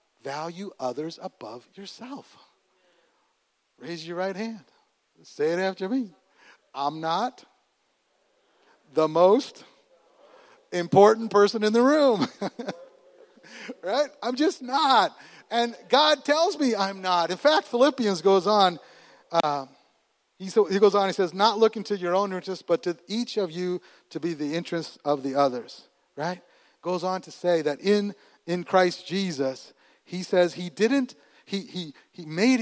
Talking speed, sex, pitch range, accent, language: 145 wpm, male, 160-235 Hz, American, English